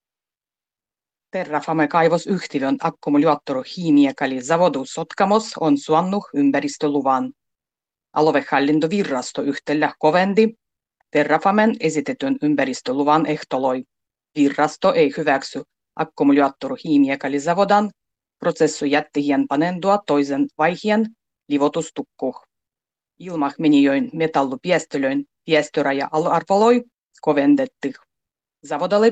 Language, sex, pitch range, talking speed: Finnish, female, 145-195 Hz, 70 wpm